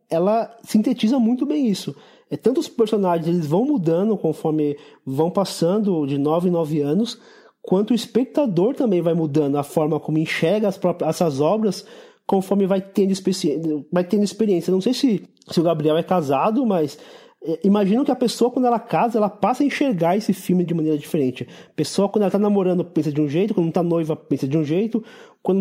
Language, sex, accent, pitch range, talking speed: Portuguese, male, Brazilian, 160-225 Hz, 200 wpm